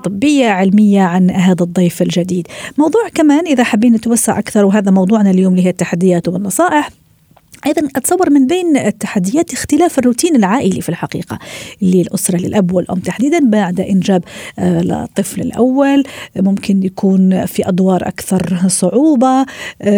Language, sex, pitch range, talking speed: Arabic, female, 185-255 Hz, 130 wpm